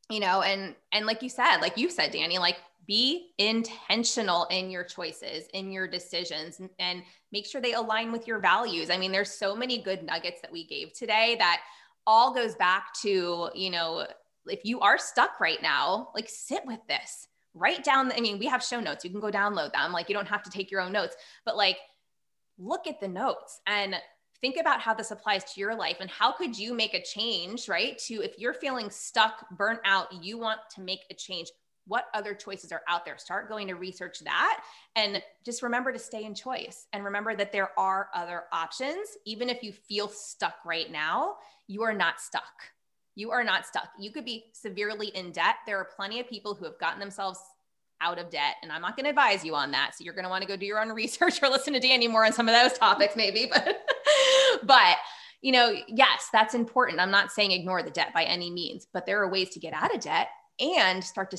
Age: 20-39